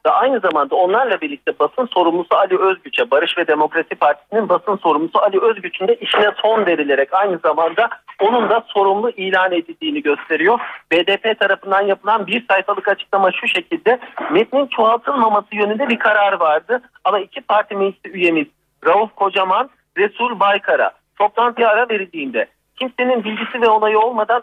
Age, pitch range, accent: 50-69, 185-235 Hz, native